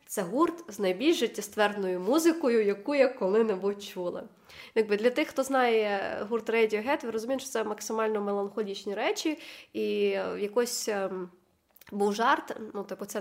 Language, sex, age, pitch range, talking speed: Ukrainian, female, 20-39, 195-230 Hz, 140 wpm